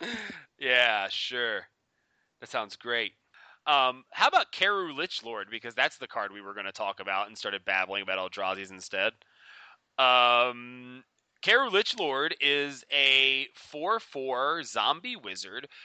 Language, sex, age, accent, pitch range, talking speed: English, male, 30-49, American, 125-155 Hz, 140 wpm